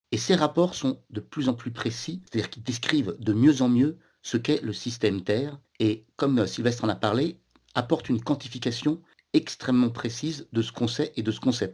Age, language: 50-69, French